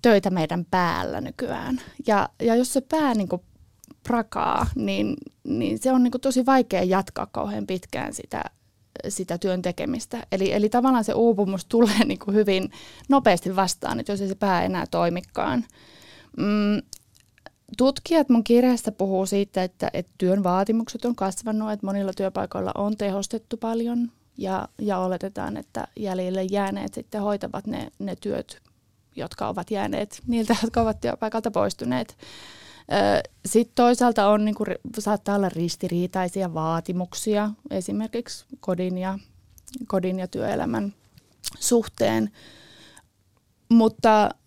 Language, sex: Finnish, female